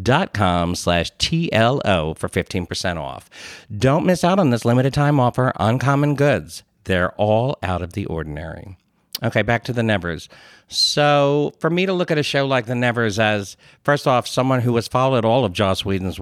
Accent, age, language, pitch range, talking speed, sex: American, 50-69, English, 100-140 Hz, 180 wpm, male